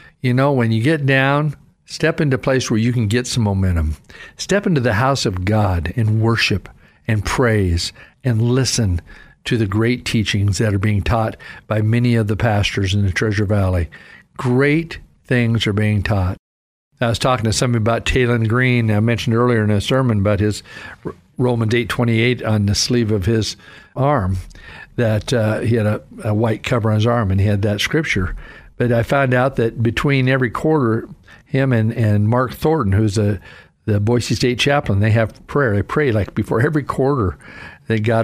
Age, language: 50-69, English